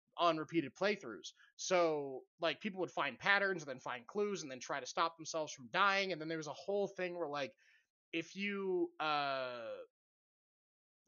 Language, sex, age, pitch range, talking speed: English, male, 30-49, 160-235 Hz, 180 wpm